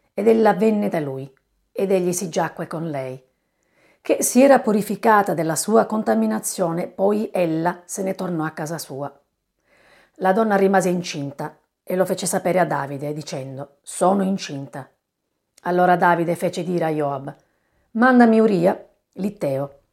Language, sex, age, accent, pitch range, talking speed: Italian, female, 40-59, native, 155-205 Hz, 145 wpm